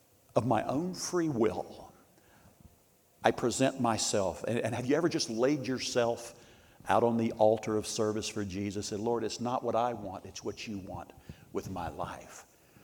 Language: English